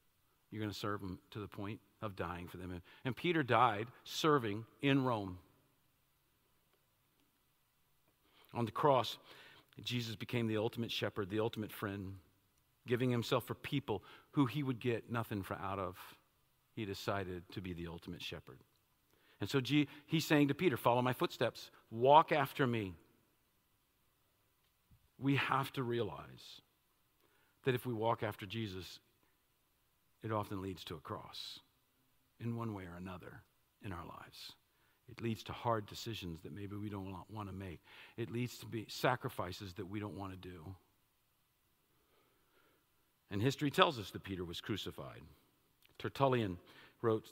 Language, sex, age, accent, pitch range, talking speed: English, male, 50-69, American, 100-125 Hz, 150 wpm